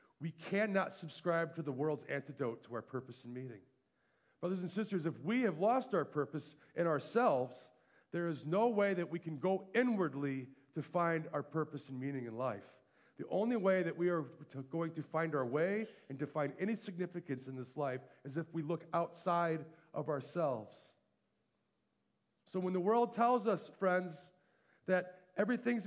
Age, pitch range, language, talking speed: 40-59, 150-220 Hz, English, 175 wpm